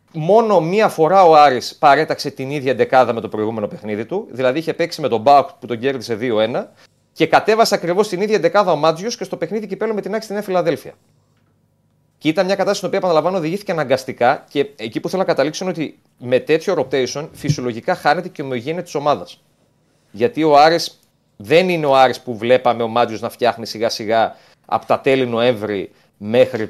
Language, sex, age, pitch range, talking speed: Greek, male, 30-49, 125-165 Hz, 200 wpm